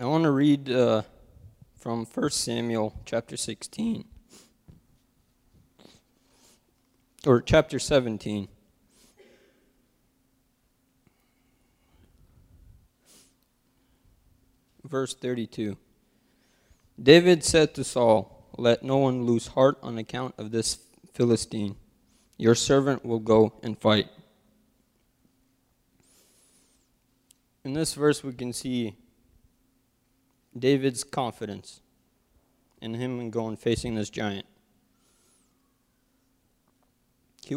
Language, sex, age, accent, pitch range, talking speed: English, male, 20-39, American, 110-130 Hz, 80 wpm